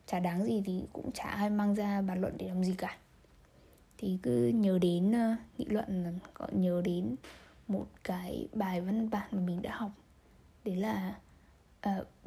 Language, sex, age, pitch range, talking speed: Vietnamese, female, 10-29, 180-210 Hz, 175 wpm